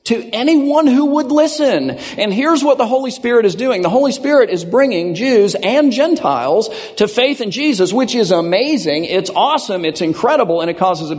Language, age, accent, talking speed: English, 50-69, American, 195 wpm